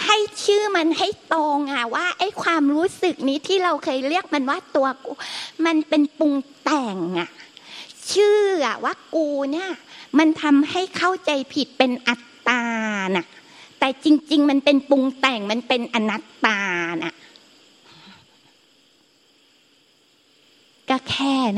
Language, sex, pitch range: Thai, female, 245-310 Hz